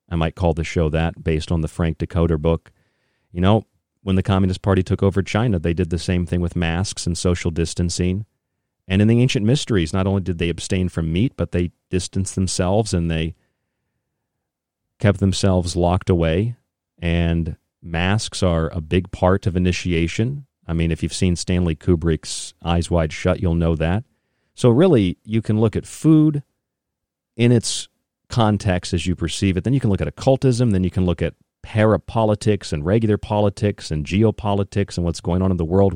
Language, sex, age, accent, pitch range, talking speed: English, male, 40-59, American, 85-100 Hz, 185 wpm